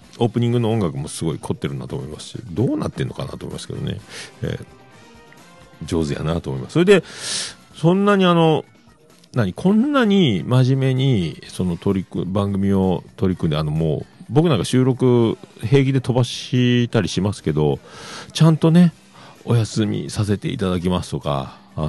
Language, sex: Japanese, male